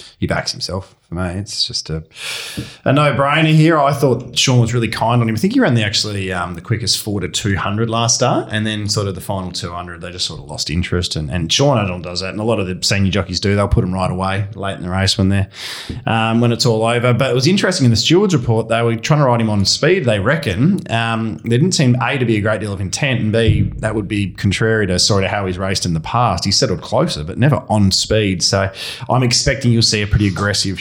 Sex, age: male, 20-39